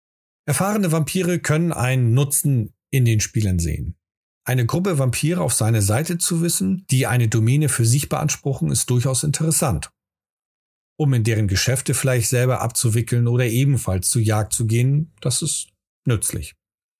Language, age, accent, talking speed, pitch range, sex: German, 40-59, German, 150 wpm, 110-145 Hz, male